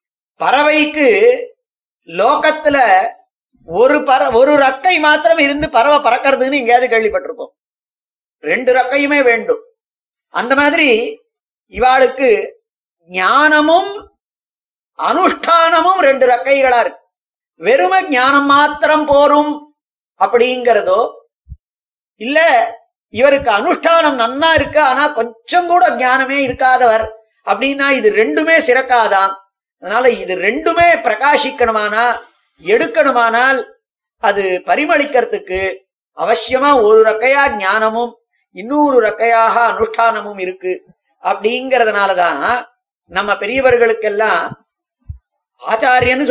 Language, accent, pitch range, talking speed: Tamil, native, 230-310 Hz, 60 wpm